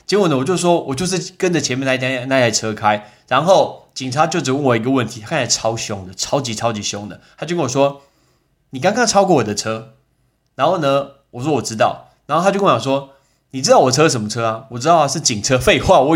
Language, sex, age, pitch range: Chinese, male, 20-39, 120-165 Hz